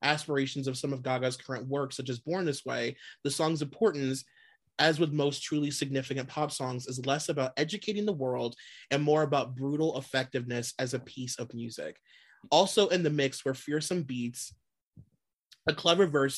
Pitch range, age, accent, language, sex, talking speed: 130-175 Hz, 30-49, American, English, male, 175 wpm